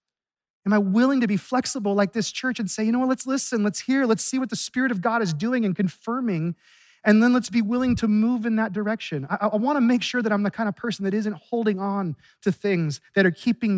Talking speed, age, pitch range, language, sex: 255 wpm, 30-49, 170-215 Hz, English, male